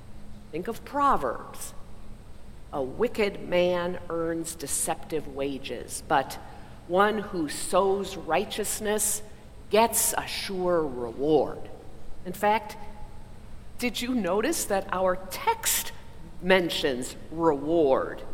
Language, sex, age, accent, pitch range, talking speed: English, female, 50-69, American, 165-230 Hz, 90 wpm